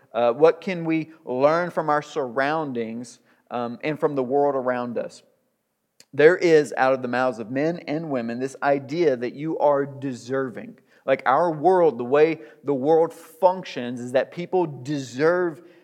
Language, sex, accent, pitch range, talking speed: English, male, American, 135-180 Hz, 165 wpm